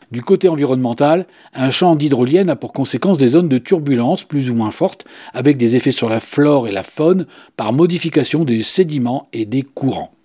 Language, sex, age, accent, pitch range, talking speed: French, male, 40-59, French, 130-190 Hz, 195 wpm